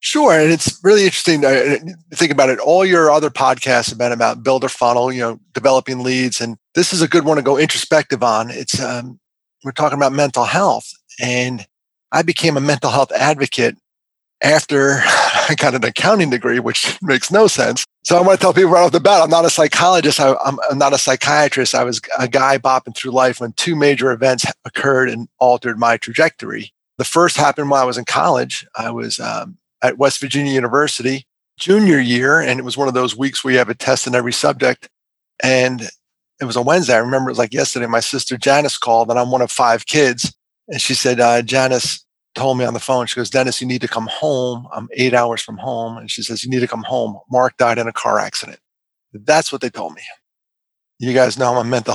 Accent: American